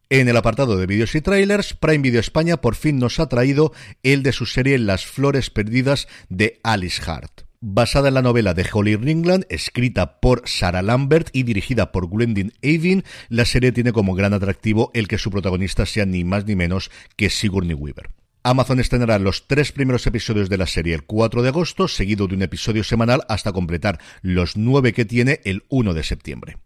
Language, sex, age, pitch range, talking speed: Spanish, male, 50-69, 95-125 Hz, 195 wpm